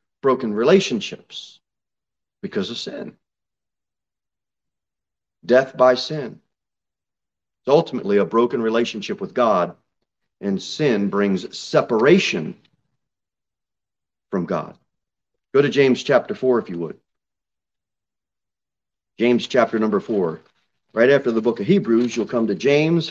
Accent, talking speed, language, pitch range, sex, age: American, 110 wpm, English, 120-165 Hz, male, 40-59